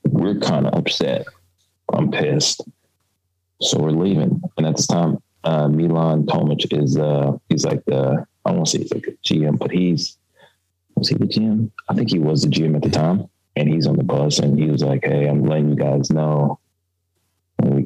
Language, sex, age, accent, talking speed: German, male, 20-39, American, 200 wpm